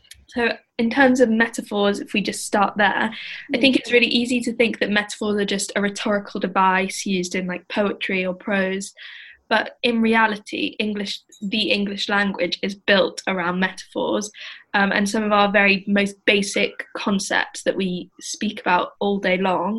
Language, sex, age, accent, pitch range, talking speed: English, female, 10-29, British, 190-215 Hz, 175 wpm